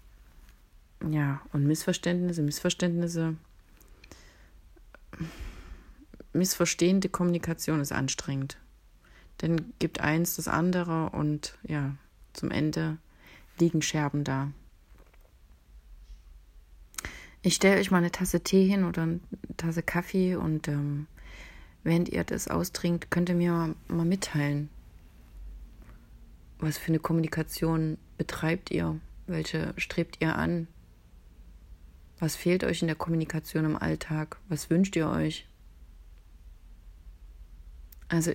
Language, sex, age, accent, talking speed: German, female, 30-49, German, 105 wpm